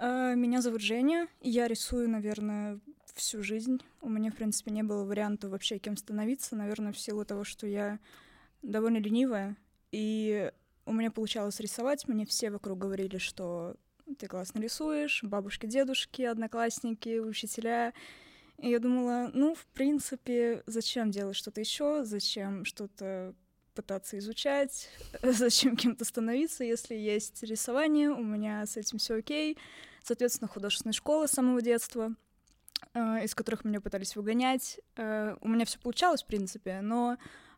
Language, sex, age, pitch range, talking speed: Russian, female, 20-39, 205-245 Hz, 140 wpm